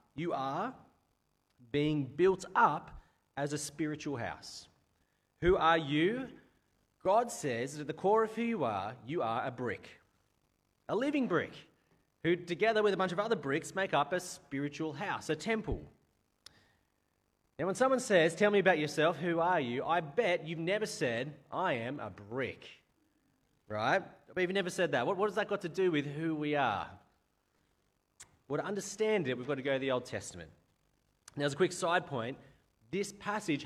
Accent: Australian